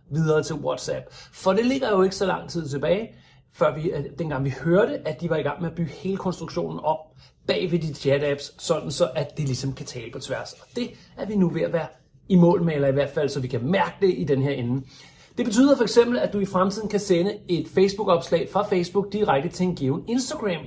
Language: Danish